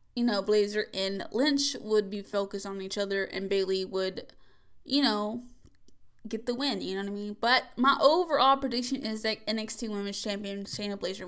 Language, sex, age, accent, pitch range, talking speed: English, female, 10-29, American, 215-280 Hz, 185 wpm